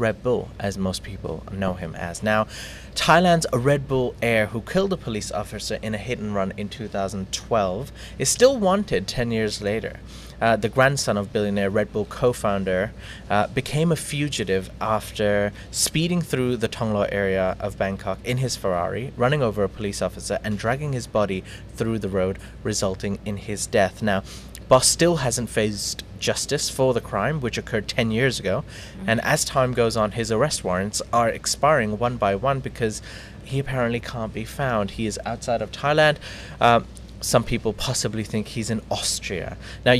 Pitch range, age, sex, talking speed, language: 100-125 Hz, 30-49, male, 175 wpm, English